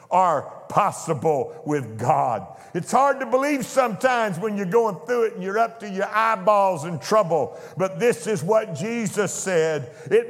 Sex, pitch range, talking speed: male, 180-225 Hz, 170 wpm